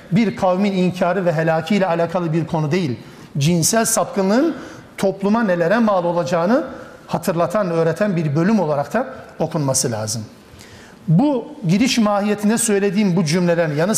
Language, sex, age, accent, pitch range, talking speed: Turkish, male, 60-79, native, 175-225 Hz, 130 wpm